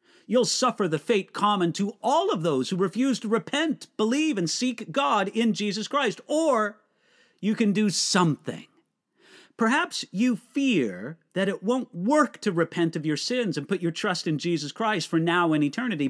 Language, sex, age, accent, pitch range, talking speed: English, male, 40-59, American, 160-235 Hz, 180 wpm